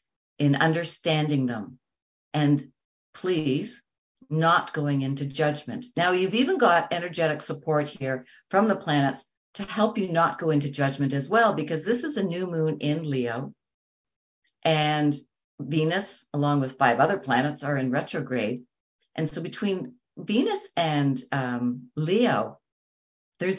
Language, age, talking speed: English, 60-79, 135 wpm